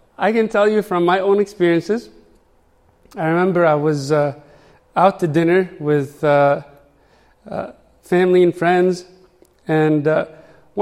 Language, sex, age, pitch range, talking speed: English, male, 30-49, 155-205 Hz, 135 wpm